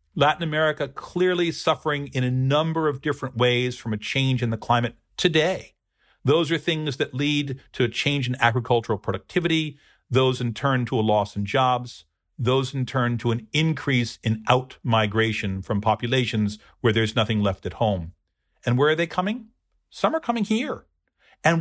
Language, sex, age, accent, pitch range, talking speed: English, male, 50-69, American, 110-150 Hz, 170 wpm